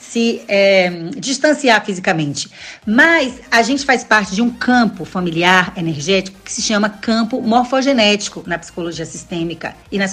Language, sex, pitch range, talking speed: Portuguese, female, 185-230 Hz, 135 wpm